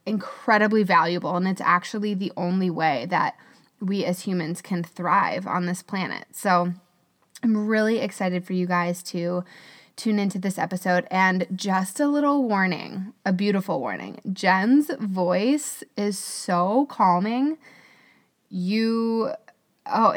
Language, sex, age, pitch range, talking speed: English, female, 20-39, 185-240 Hz, 130 wpm